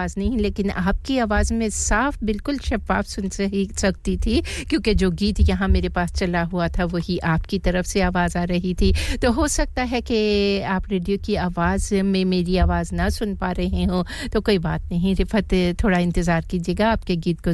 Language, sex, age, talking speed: English, female, 50-69, 200 wpm